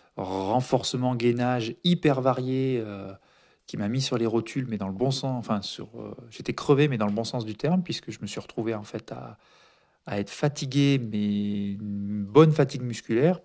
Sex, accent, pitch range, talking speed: male, French, 105-135 Hz, 195 wpm